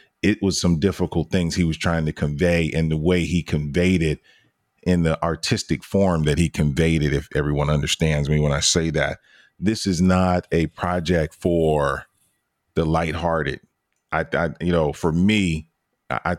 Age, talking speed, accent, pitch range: 40-59, 175 wpm, American, 80-90 Hz